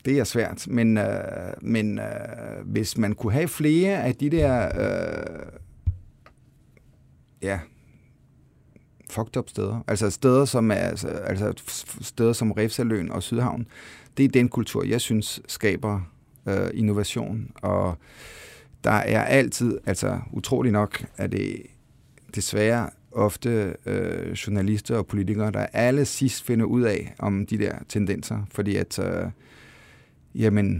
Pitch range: 105-120 Hz